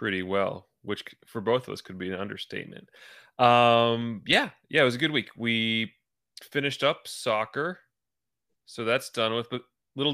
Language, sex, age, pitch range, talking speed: English, male, 20-39, 100-120 Hz, 170 wpm